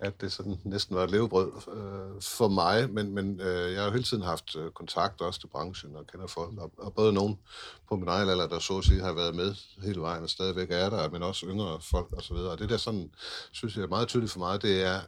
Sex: male